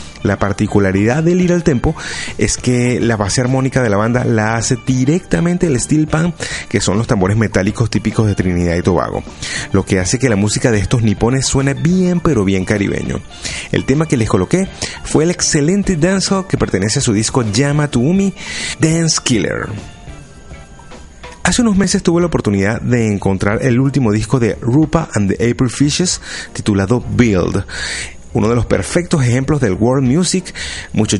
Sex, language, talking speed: male, Spanish, 175 wpm